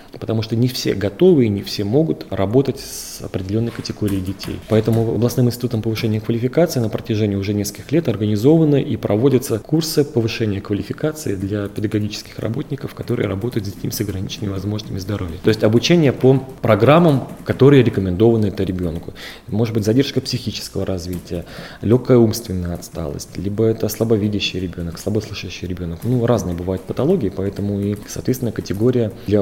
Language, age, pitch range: Russian, 30-49, 100-125 Hz